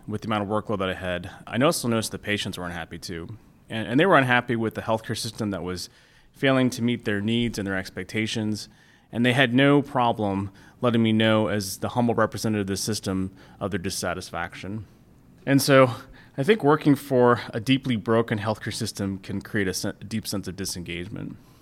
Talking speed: 200 wpm